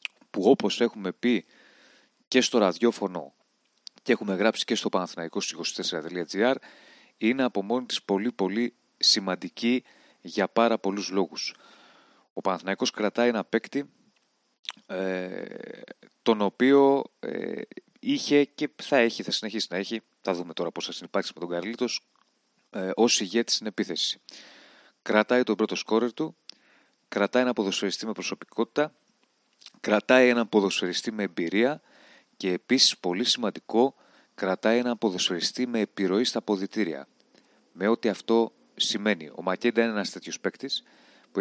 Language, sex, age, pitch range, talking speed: Greek, male, 30-49, 95-120 Hz, 135 wpm